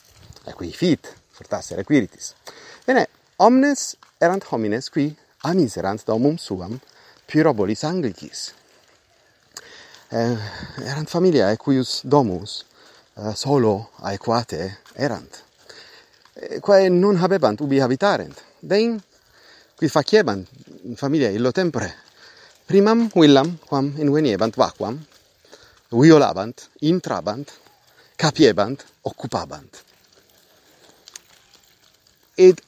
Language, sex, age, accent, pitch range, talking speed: Italian, male, 40-59, native, 110-165 Hz, 80 wpm